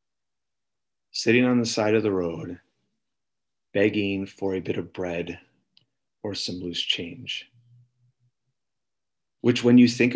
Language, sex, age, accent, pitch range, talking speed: English, male, 40-59, American, 105-145 Hz, 125 wpm